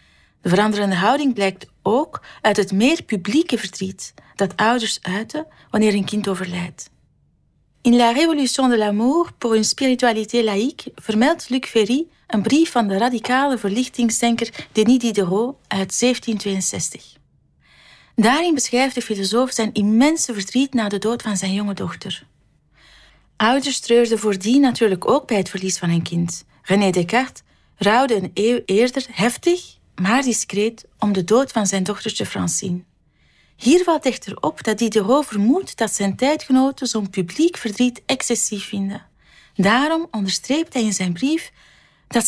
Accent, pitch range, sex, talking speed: Dutch, 195-250 Hz, female, 150 wpm